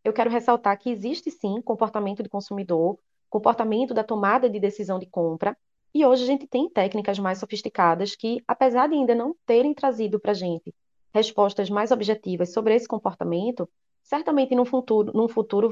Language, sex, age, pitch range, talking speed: Portuguese, female, 20-39, 205-250 Hz, 170 wpm